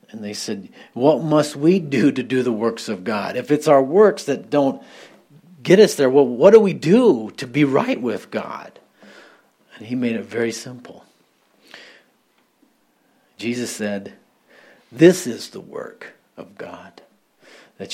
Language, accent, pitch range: English, American, 115-145 Hz